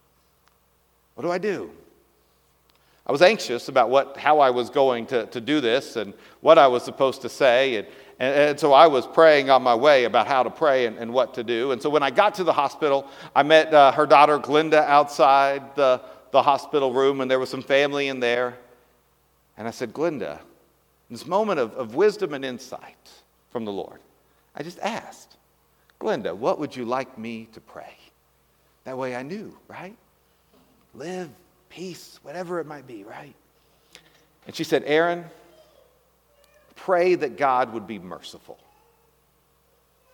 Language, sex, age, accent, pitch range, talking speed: English, male, 50-69, American, 120-150 Hz, 175 wpm